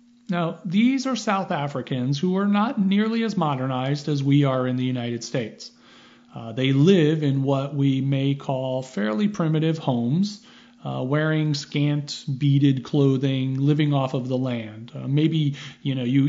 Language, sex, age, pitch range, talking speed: English, male, 40-59, 125-160 Hz, 160 wpm